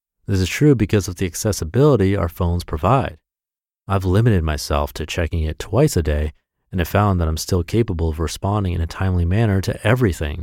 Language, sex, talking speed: English, male, 195 wpm